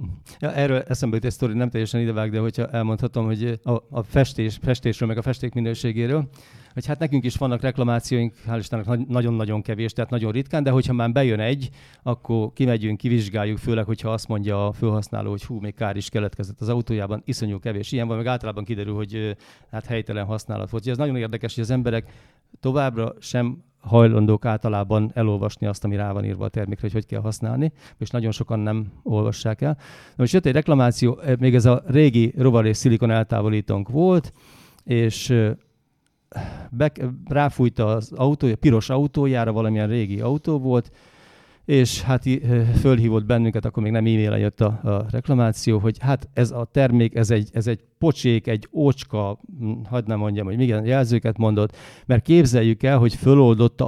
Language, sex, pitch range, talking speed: English, male, 110-130 Hz, 165 wpm